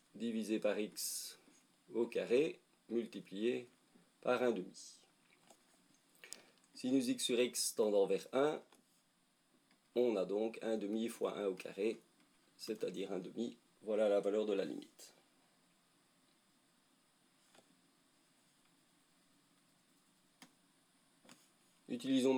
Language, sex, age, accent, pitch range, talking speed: French, male, 40-59, French, 105-125 Hz, 95 wpm